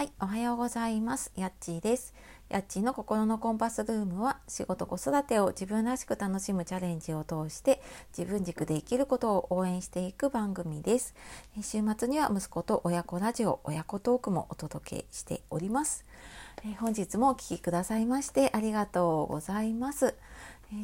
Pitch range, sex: 175-230 Hz, female